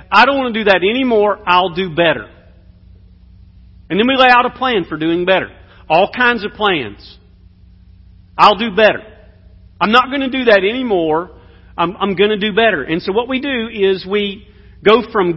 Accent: American